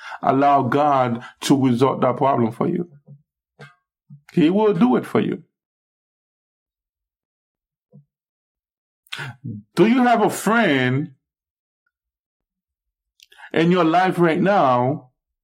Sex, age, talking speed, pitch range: male, 50-69, 95 wpm, 140-175 Hz